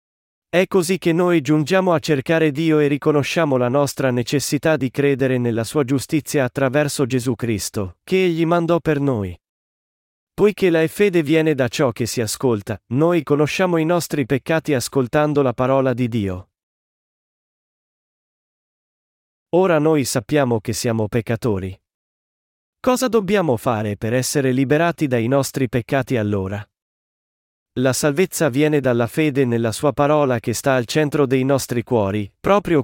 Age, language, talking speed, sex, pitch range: 40-59, Italian, 140 wpm, male, 125-160 Hz